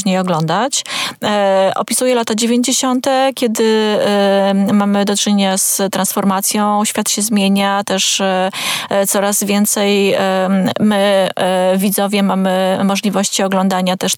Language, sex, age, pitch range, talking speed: Polish, female, 20-39, 190-215 Hz, 115 wpm